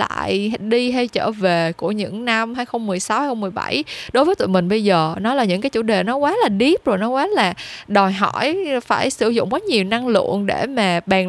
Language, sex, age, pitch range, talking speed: Vietnamese, female, 10-29, 195-255 Hz, 225 wpm